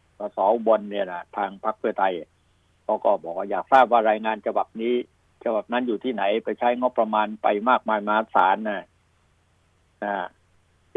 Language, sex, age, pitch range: Thai, male, 60-79, 90-120 Hz